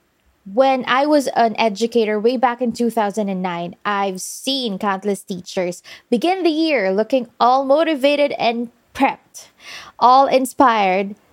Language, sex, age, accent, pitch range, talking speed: English, female, 20-39, Filipino, 205-285 Hz, 120 wpm